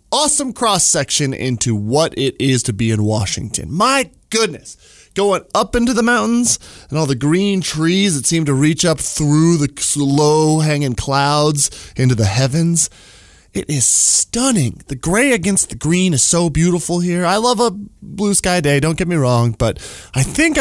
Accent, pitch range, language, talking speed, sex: American, 120-180 Hz, English, 175 wpm, male